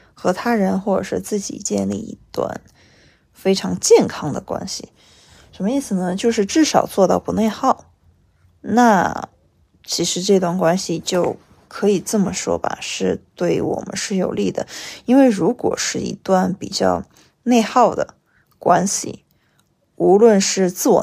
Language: Chinese